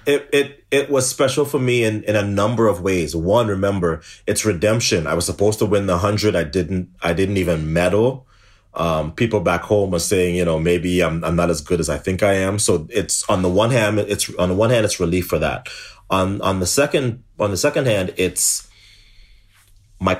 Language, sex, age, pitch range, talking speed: English, male, 30-49, 90-115 Hz, 220 wpm